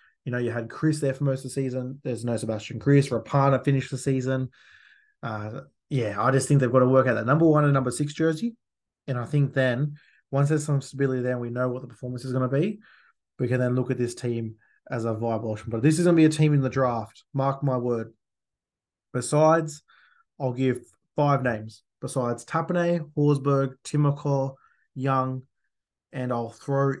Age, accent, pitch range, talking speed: 20-39, Australian, 120-140 Hz, 205 wpm